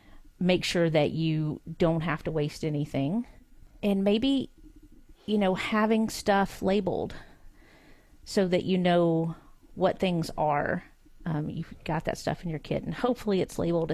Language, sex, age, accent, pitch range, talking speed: English, female, 40-59, American, 165-200 Hz, 150 wpm